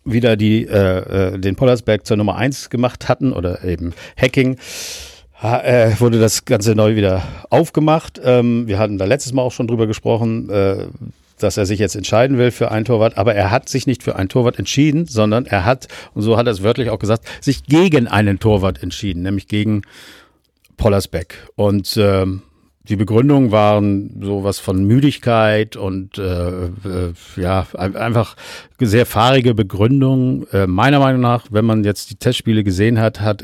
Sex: male